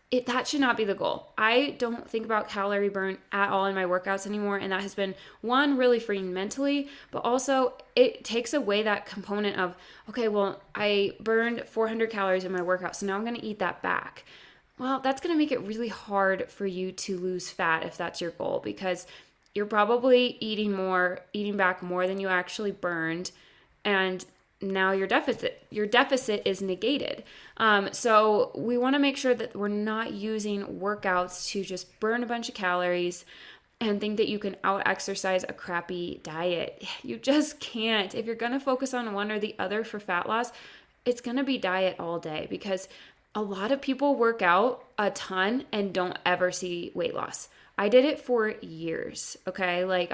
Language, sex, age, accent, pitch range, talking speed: English, female, 20-39, American, 185-235 Hz, 195 wpm